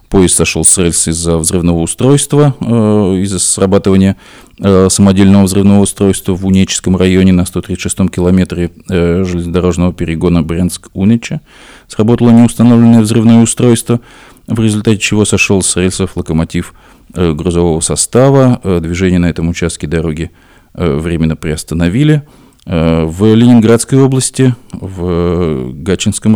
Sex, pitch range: male, 85-110 Hz